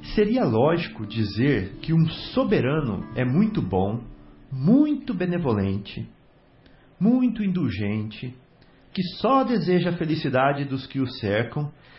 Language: Portuguese